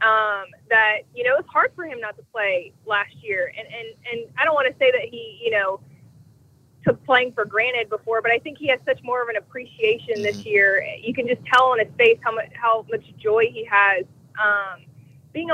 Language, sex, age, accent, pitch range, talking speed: English, female, 20-39, American, 200-300 Hz, 225 wpm